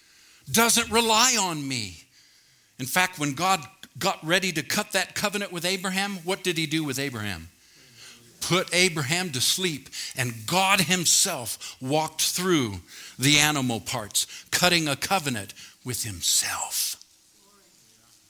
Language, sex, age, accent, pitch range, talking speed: English, male, 50-69, American, 115-180 Hz, 130 wpm